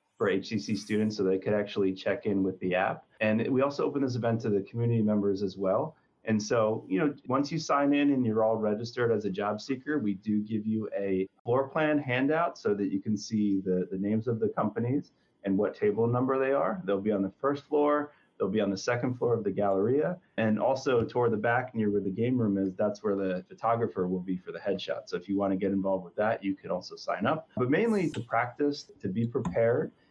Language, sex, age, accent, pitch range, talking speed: English, male, 30-49, American, 100-130 Hz, 240 wpm